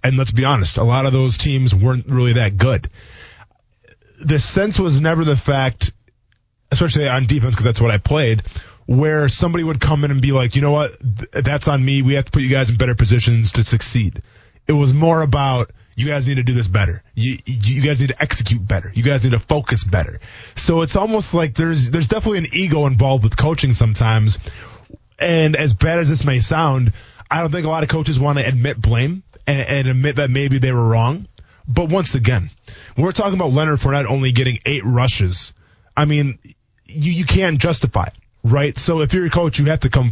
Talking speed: 215 wpm